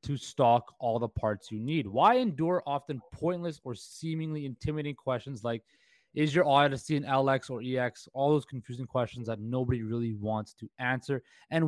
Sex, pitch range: male, 120-155 Hz